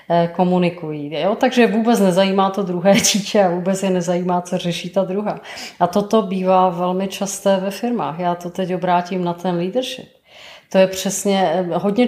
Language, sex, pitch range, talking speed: Czech, female, 180-205 Hz, 170 wpm